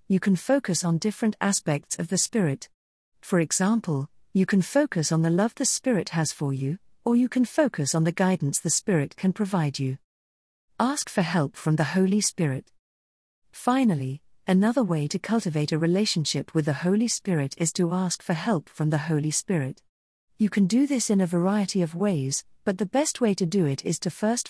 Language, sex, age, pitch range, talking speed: English, female, 50-69, 150-210 Hz, 195 wpm